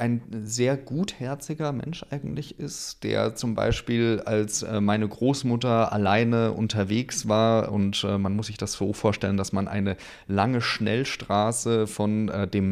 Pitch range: 100-120 Hz